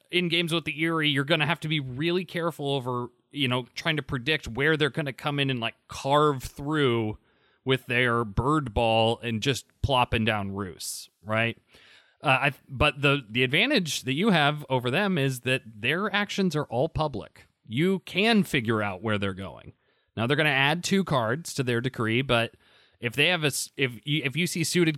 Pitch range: 115-150 Hz